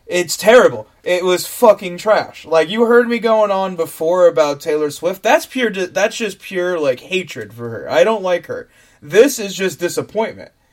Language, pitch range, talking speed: English, 170-255 Hz, 185 wpm